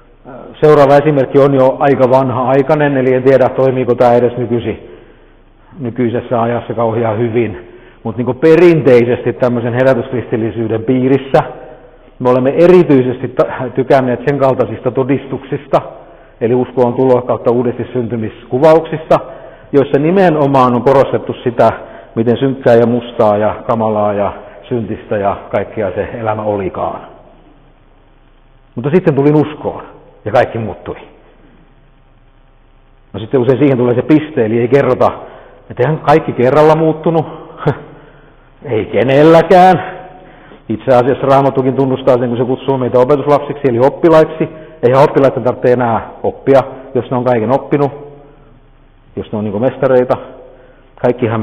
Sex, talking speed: male, 125 wpm